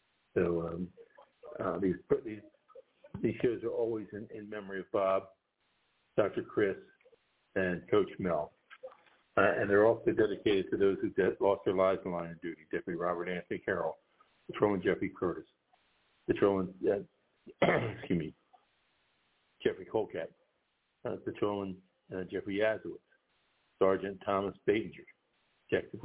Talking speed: 130 wpm